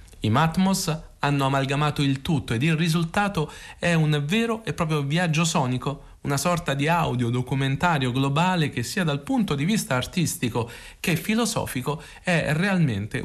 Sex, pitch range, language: male, 120-160 Hz, Italian